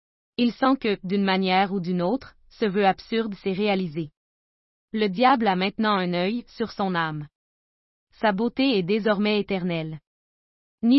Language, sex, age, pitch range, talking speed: French, female, 20-39, 185-225 Hz, 155 wpm